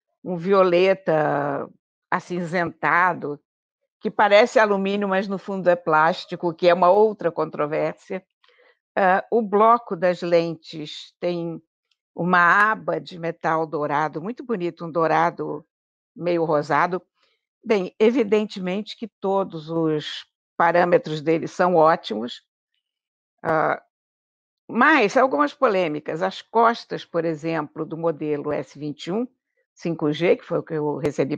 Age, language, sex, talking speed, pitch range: 60-79, Portuguese, female, 115 wpm, 160-220 Hz